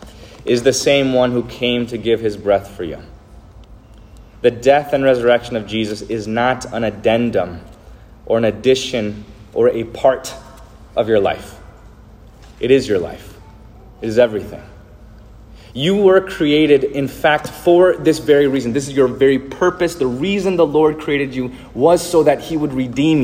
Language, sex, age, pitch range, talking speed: English, male, 30-49, 110-145 Hz, 165 wpm